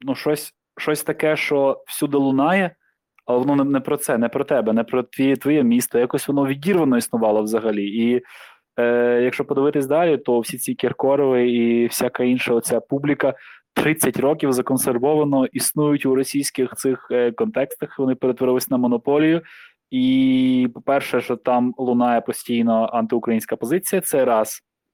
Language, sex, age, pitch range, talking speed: Ukrainian, male, 20-39, 120-150 Hz, 150 wpm